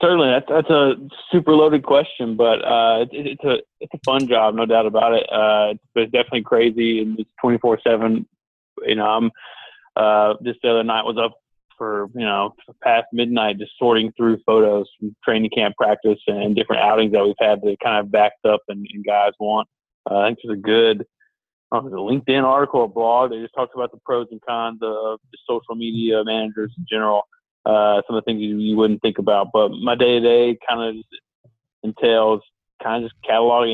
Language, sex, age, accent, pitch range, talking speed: English, male, 20-39, American, 105-120 Hz, 205 wpm